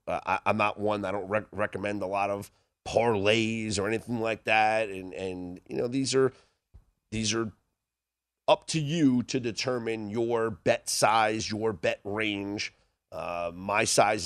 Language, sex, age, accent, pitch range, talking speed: English, male, 30-49, American, 100-140 Hz, 165 wpm